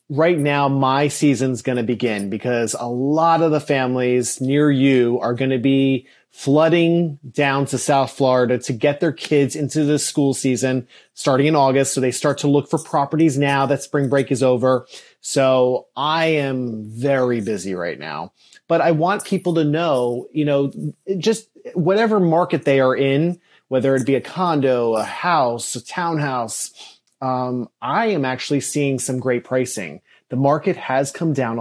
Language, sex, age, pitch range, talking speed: English, male, 30-49, 125-150 Hz, 175 wpm